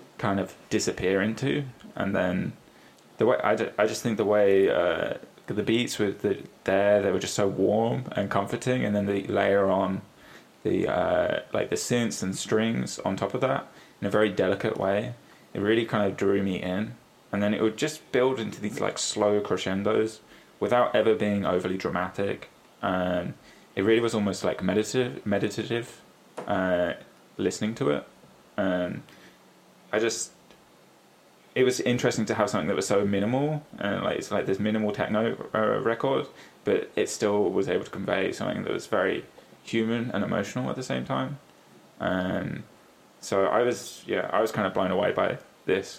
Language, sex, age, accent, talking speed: English, male, 10-29, British, 180 wpm